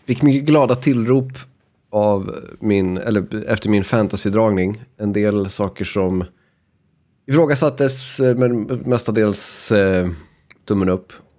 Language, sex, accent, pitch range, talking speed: Swedish, male, native, 95-125 Hz, 105 wpm